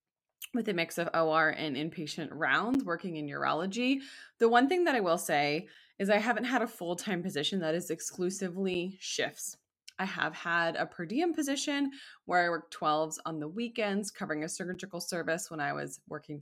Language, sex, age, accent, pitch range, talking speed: English, female, 20-39, American, 160-240 Hz, 185 wpm